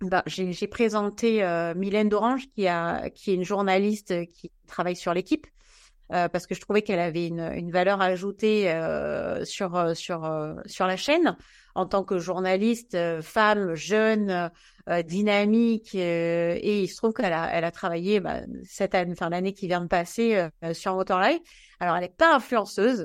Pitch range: 175-210 Hz